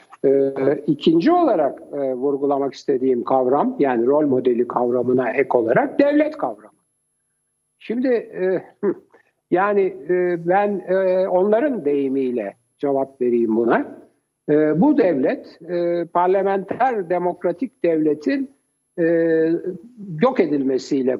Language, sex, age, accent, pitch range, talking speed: Turkish, male, 60-79, native, 140-230 Hz, 100 wpm